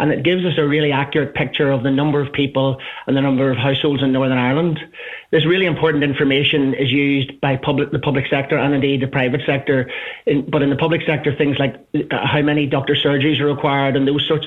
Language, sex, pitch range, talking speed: English, male, 140-155 Hz, 215 wpm